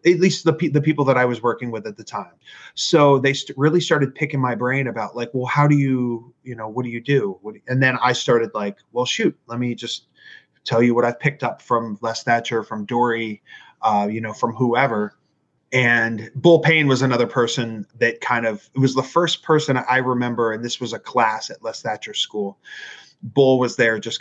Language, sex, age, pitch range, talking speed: English, male, 30-49, 120-145 Hz, 225 wpm